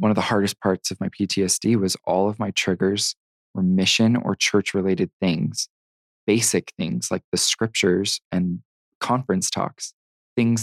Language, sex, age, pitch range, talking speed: English, male, 20-39, 95-115 Hz, 160 wpm